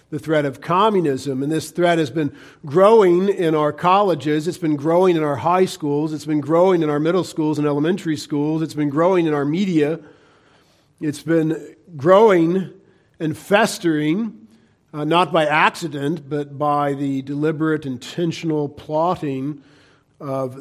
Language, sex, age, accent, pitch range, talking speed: English, male, 50-69, American, 135-165 Hz, 150 wpm